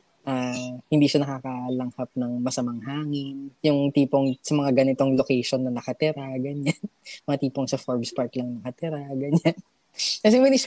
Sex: female